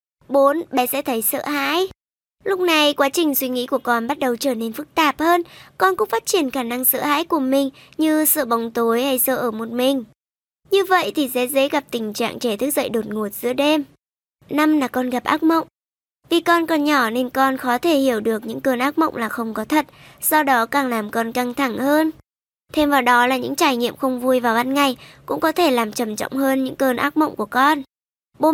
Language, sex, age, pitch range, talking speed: Vietnamese, male, 20-39, 245-300 Hz, 240 wpm